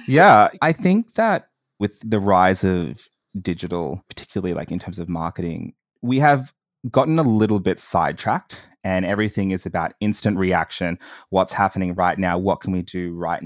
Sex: male